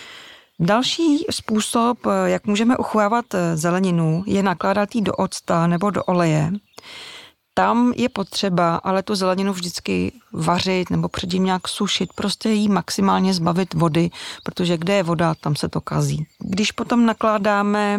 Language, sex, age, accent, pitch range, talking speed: Czech, female, 30-49, native, 175-205 Hz, 140 wpm